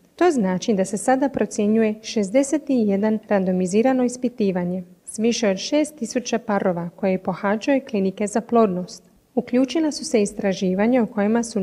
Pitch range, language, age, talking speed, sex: 200-255 Hz, Croatian, 30-49, 135 wpm, female